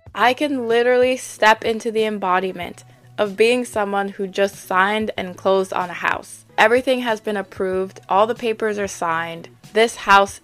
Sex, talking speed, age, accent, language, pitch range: female, 165 wpm, 20-39, American, English, 185-225 Hz